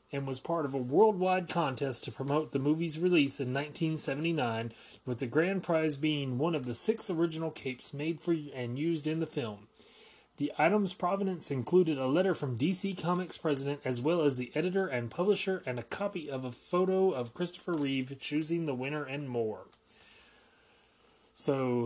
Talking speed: 180 wpm